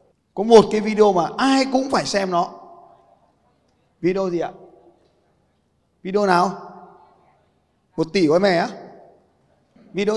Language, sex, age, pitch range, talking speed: Vietnamese, male, 20-39, 155-230 Hz, 125 wpm